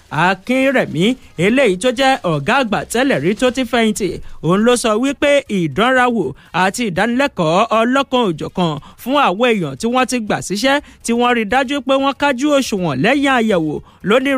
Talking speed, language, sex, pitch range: 160 wpm, English, male, 195-260 Hz